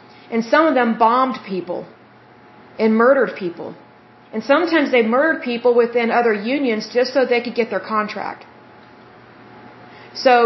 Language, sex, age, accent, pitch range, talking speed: Bengali, female, 30-49, American, 220-265 Hz, 145 wpm